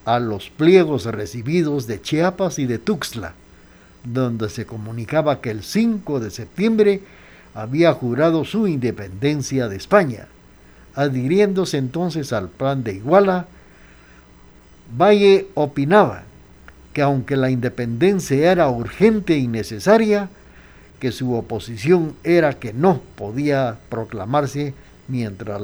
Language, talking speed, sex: Spanish, 110 wpm, male